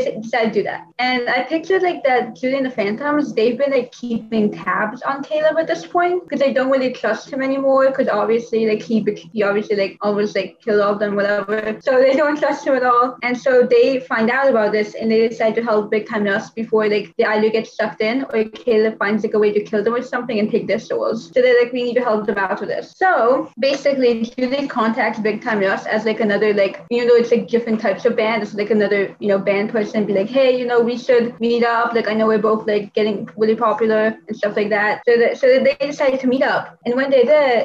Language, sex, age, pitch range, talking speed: English, female, 20-39, 215-250 Hz, 255 wpm